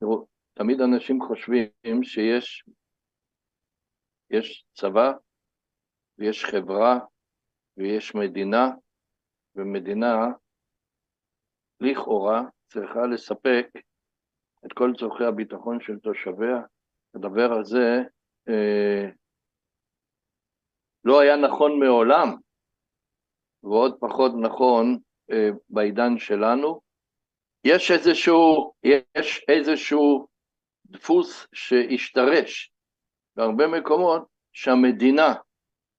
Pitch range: 110-135 Hz